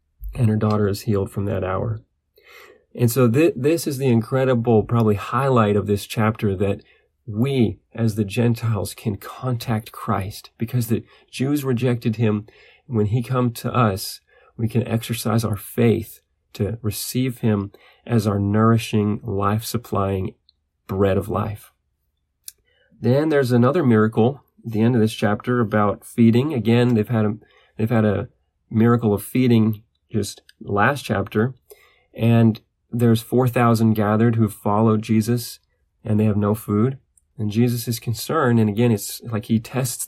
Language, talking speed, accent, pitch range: English, 150 wpm, American, 105-120 Hz